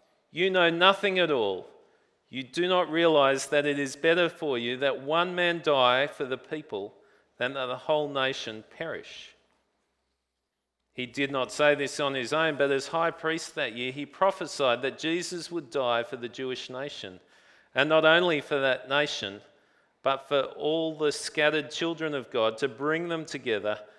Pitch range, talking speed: 125-160 Hz, 175 wpm